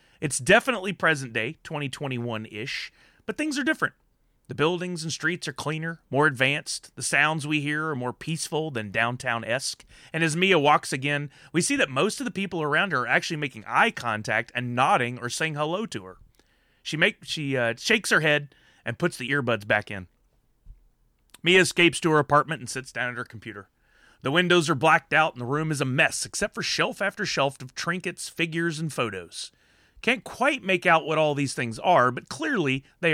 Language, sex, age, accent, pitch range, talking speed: English, male, 30-49, American, 125-170 Hz, 195 wpm